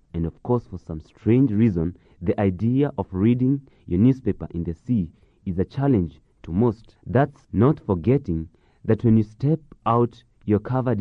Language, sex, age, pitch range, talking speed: English, male, 30-49, 95-125 Hz, 170 wpm